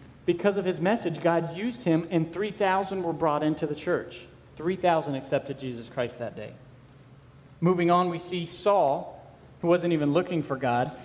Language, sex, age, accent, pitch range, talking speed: English, male, 40-59, American, 160-200 Hz, 170 wpm